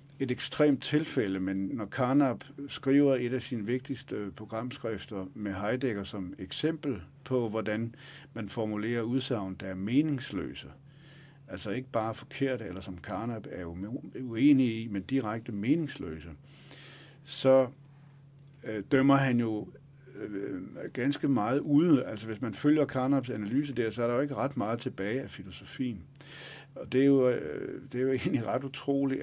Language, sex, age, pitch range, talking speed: Danish, male, 60-79, 105-140 Hz, 150 wpm